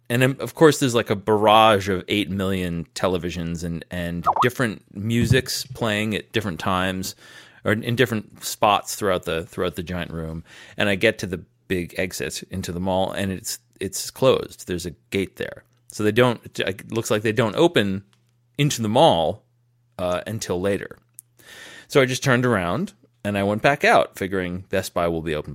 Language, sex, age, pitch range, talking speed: English, male, 30-49, 100-135 Hz, 185 wpm